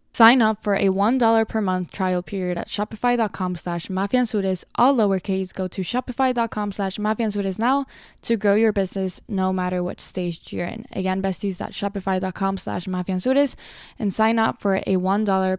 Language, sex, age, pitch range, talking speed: English, female, 10-29, 190-230 Hz, 160 wpm